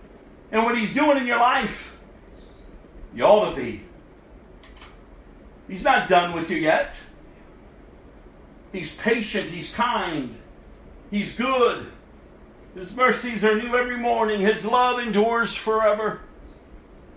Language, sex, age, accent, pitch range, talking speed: English, male, 50-69, American, 195-245 Hz, 115 wpm